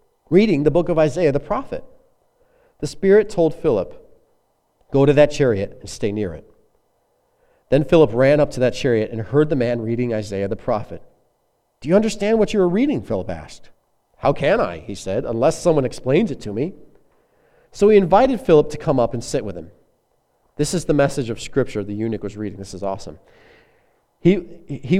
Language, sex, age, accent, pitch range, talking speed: English, male, 40-59, American, 115-180 Hz, 190 wpm